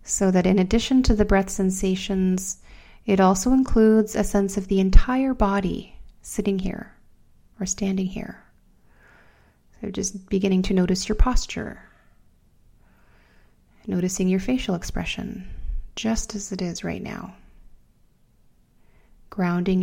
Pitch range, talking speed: 175-195 Hz, 120 wpm